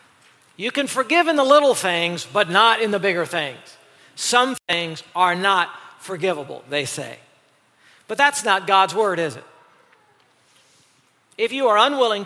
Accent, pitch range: American, 180-230 Hz